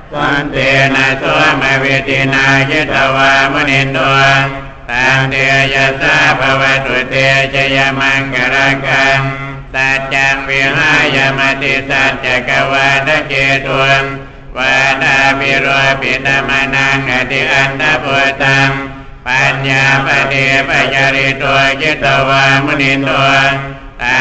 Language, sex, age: Thai, male, 60-79